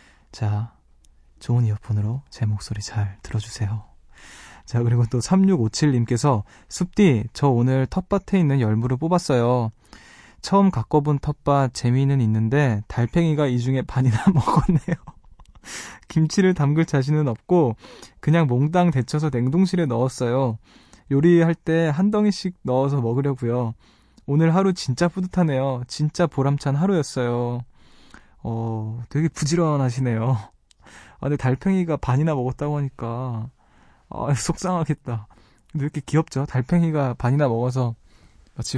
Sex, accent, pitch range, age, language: male, native, 115-150 Hz, 20-39, Korean